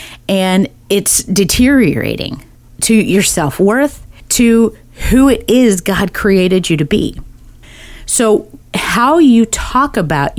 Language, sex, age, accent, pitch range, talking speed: English, female, 30-49, American, 160-220 Hz, 115 wpm